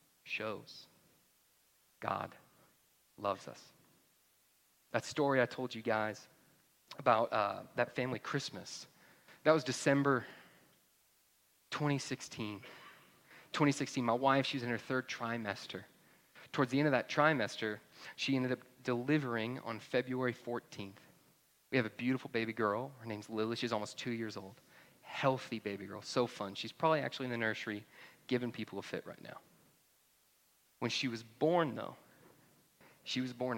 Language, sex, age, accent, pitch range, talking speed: English, male, 30-49, American, 110-130 Hz, 140 wpm